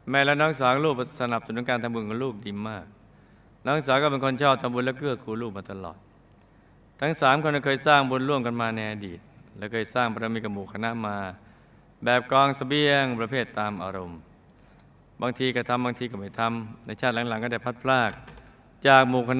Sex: male